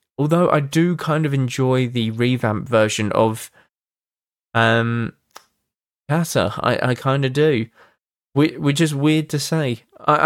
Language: English